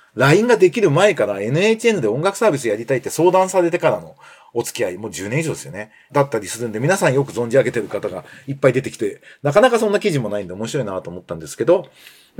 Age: 40-59